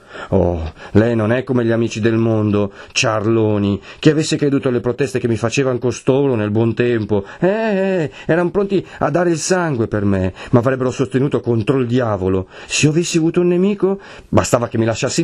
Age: 40-59